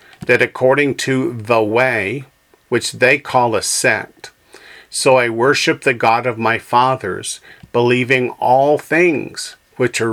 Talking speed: 135 wpm